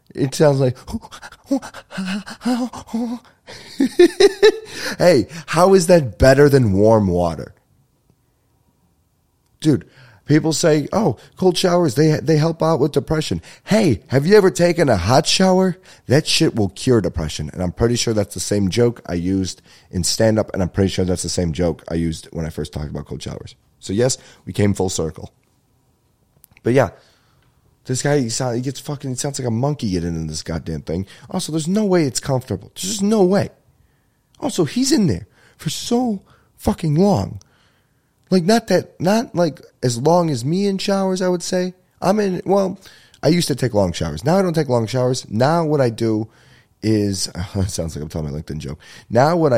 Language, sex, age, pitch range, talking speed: English, male, 30-49, 100-170 Hz, 185 wpm